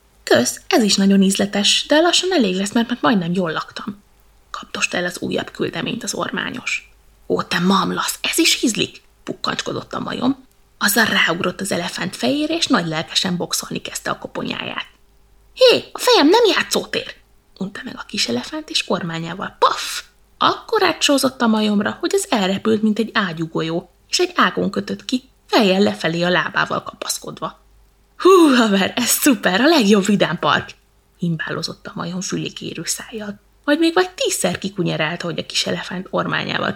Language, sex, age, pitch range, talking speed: Hungarian, female, 20-39, 180-275 Hz, 155 wpm